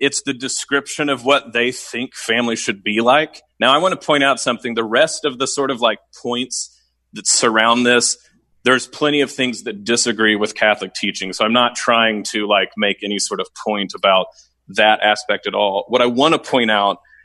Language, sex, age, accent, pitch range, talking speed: English, male, 30-49, American, 110-140 Hz, 210 wpm